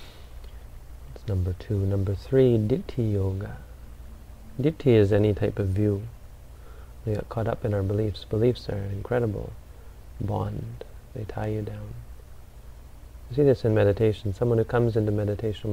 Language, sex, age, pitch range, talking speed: English, male, 30-49, 85-110 Hz, 145 wpm